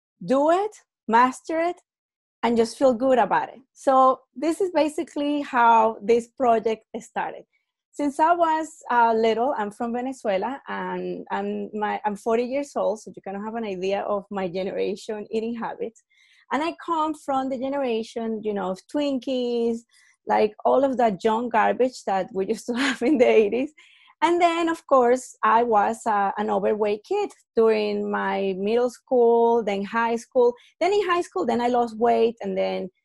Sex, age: female, 30-49